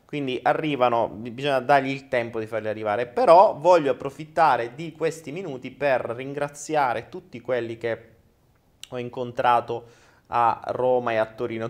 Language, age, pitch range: Italian, 30-49, 110-135 Hz